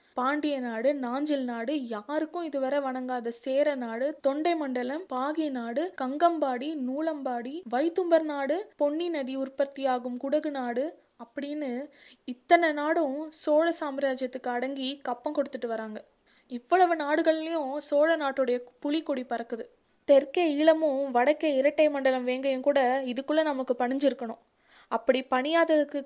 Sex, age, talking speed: female, 20-39, 115 wpm